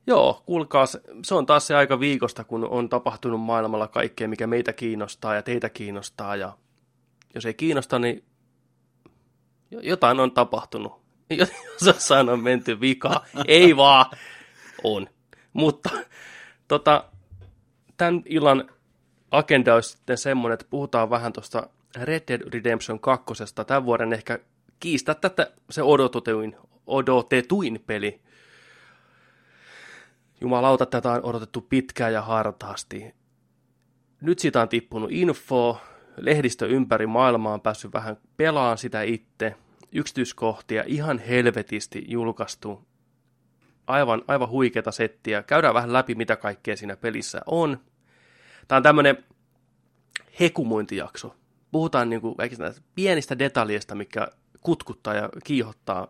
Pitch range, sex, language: 110-135 Hz, male, Finnish